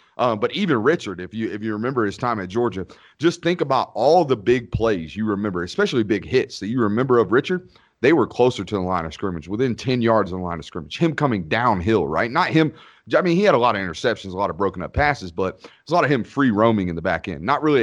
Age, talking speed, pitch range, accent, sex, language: 30-49, 270 wpm, 100-135 Hz, American, male, English